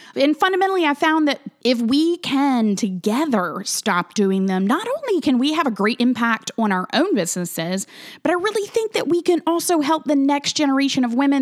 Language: English